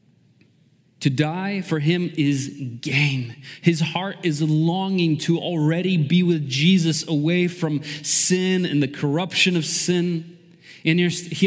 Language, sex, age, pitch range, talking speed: English, male, 30-49, 140-175 Hz, 130 wpm